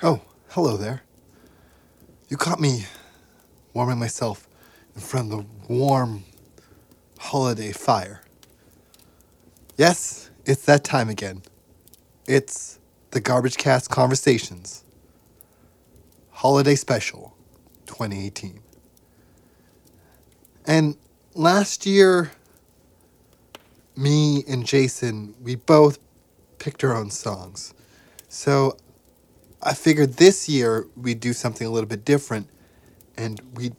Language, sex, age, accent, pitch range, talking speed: English, male, 20-39, American, 110-145 Hz, 95 wpm